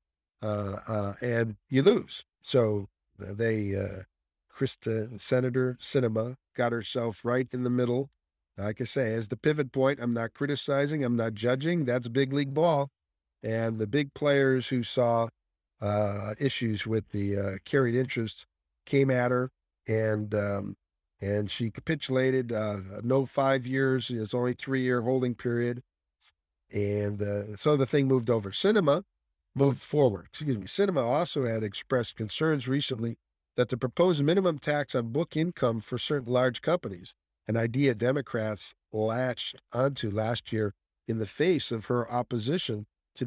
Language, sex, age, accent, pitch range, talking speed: English, male, 50-69, American, 110-140 Hz, 150 wpm